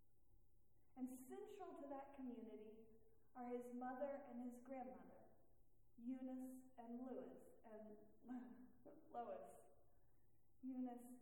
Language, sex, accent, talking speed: English, female, American, 85 wpm